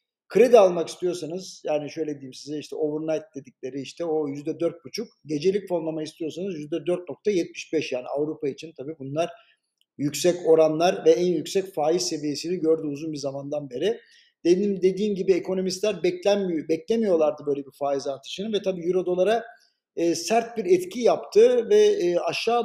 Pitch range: 160-215 Hz